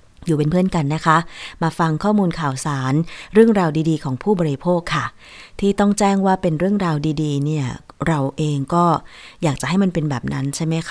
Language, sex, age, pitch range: Thai, female, 20-39, 150-190 Hz